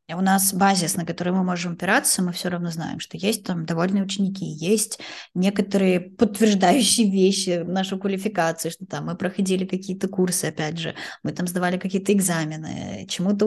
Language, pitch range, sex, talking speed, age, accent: Russian, 170-200 Hz, female, 165 wpm, 20-39, native